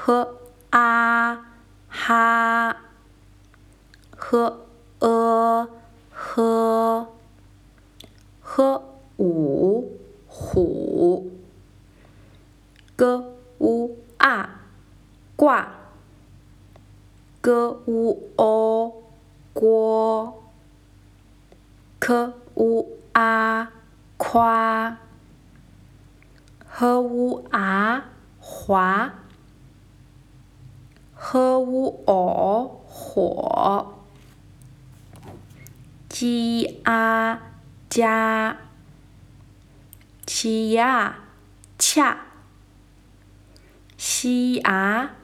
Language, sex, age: Chinese, female, 20-39